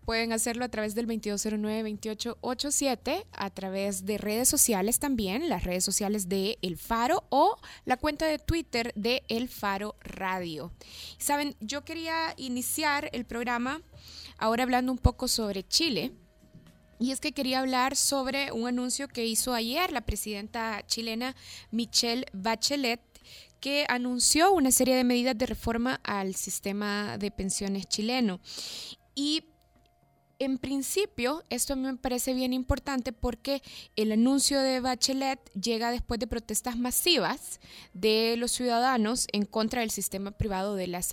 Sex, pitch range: female, 215-260 Hz